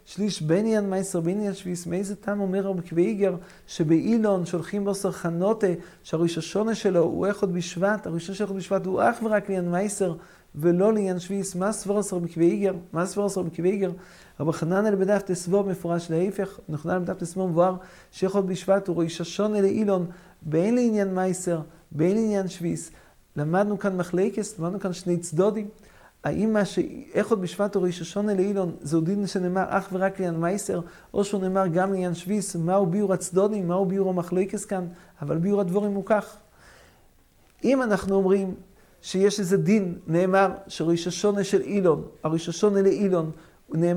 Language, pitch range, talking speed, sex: English, 175-200 Hz, 110 wpm, male